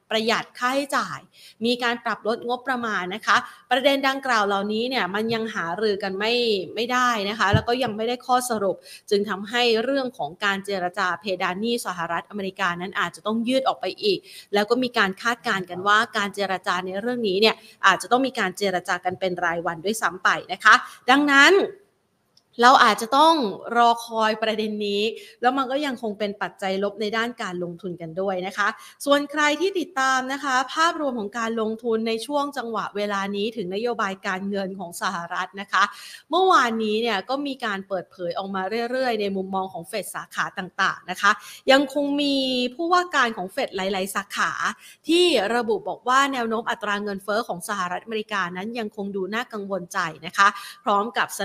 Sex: female